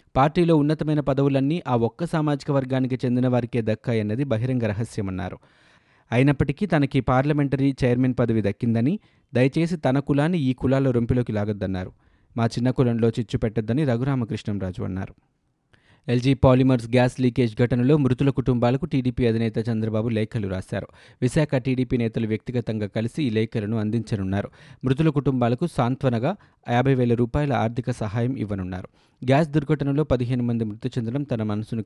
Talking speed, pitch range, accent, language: 130 wpm, 110-135 Hz, native, Telugu